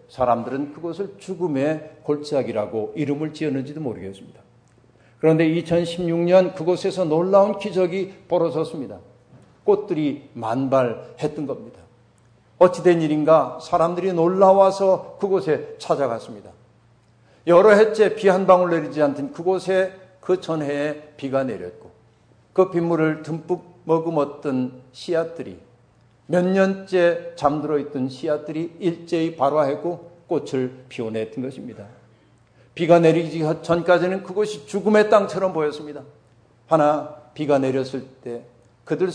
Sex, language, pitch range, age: male, Korean, 130-180 Hz, 50-69